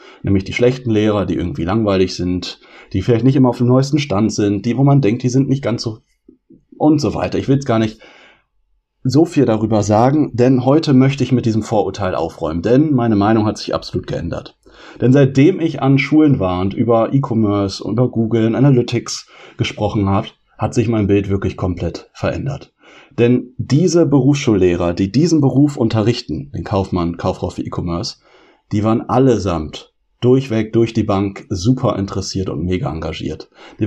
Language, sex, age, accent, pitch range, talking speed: German, male, 30-49, German, 105-135 Hz, 180 wpm